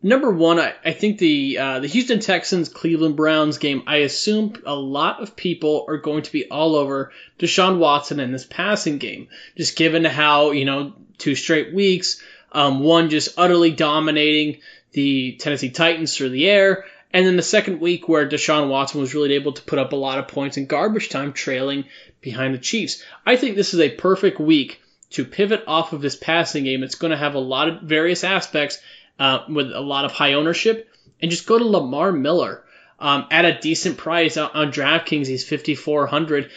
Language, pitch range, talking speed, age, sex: English, 145-175 Hz, 195 wpm, 20-39, male